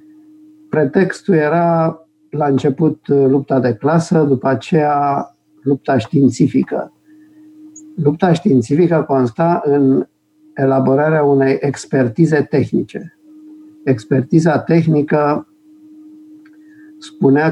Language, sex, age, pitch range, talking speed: Romanian, male, 50-69, 130-175 Hz, 75 wpm